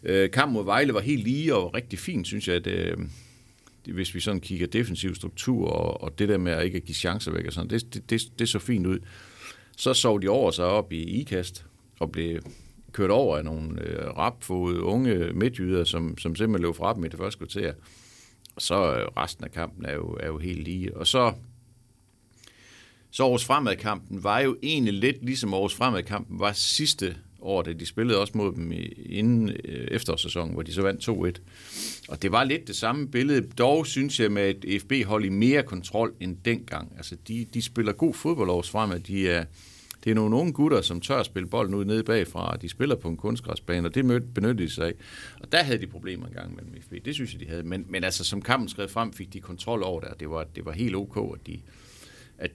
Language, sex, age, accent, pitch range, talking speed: Danish, male, 60-79, native, 90-115 Hz, 225 wpm